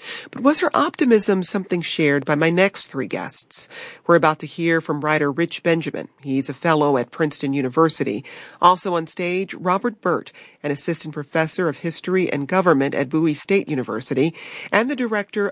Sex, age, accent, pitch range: female, 40-59, American, 150-185 Hz